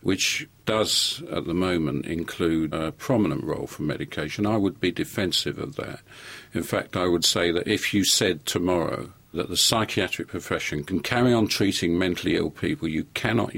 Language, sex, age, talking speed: English, male, 50-69, 175 wpm